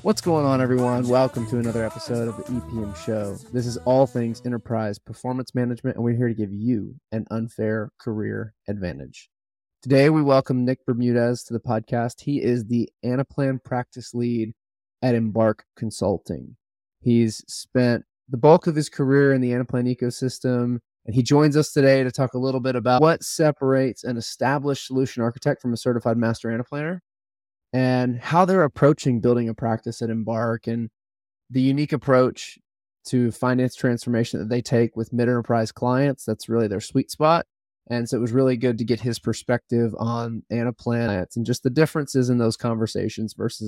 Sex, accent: male, American